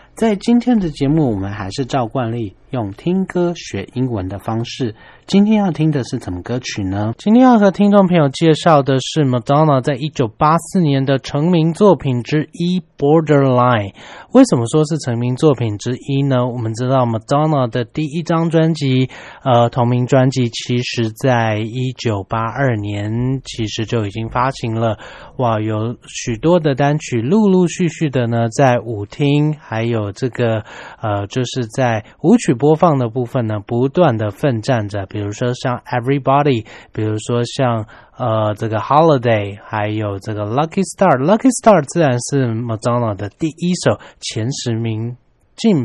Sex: male